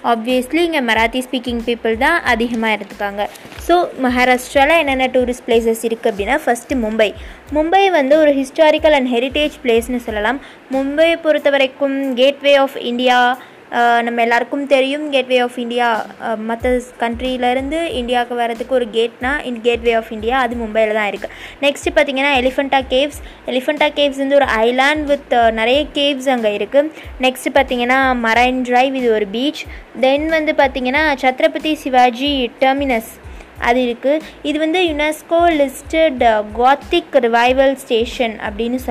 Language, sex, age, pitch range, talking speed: Tamil, female, 20-39, 235-285 Hz, 135 wpm